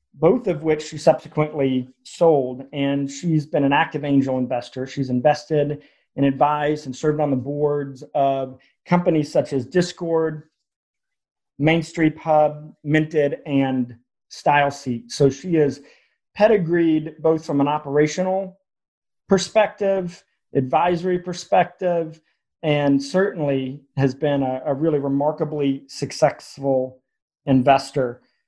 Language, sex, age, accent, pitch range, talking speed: English, male, 40-59, American, 135-170 Hz, 120 wpm